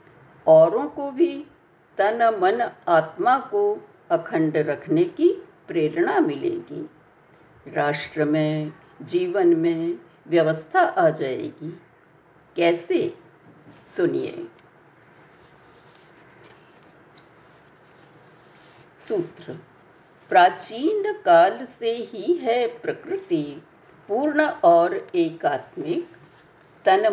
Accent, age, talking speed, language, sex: native, 60-79, 70 wpm, Hindi, female